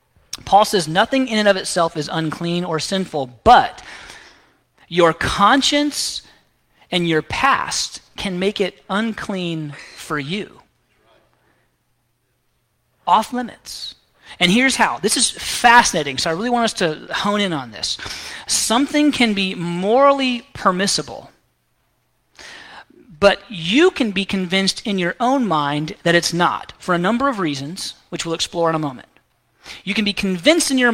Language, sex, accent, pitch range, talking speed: English, male, American, 170-230 Hz, 145 wpm